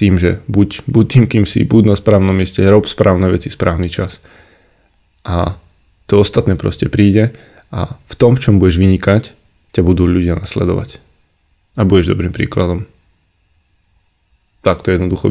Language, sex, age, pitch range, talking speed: Slovak, male, 20-39, 85-105 Hz, 150 wpm